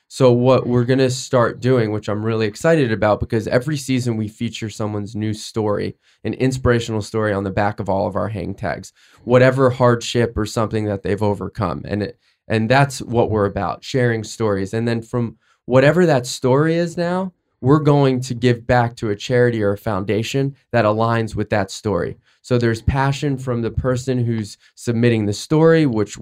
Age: 20-39